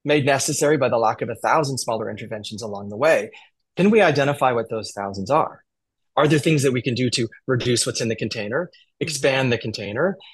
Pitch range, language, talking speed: 115-145 Hz, English, 210 wpm